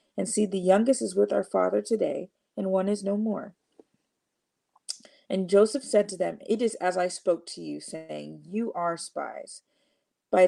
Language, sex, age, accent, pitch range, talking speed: English, female, 40-59, American, 185-225 Hz, 180 wpm